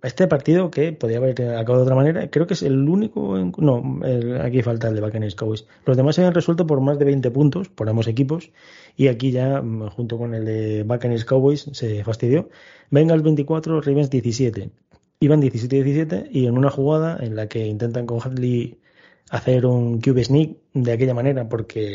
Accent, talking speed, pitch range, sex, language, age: Spanish, 195 wpm, 120-145 Hz, male, Spanish, 20-39